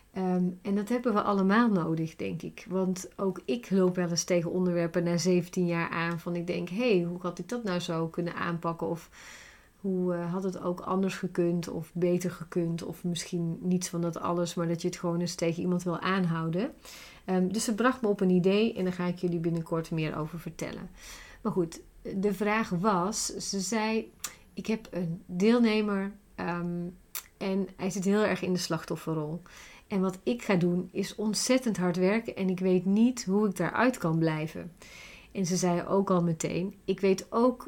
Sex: female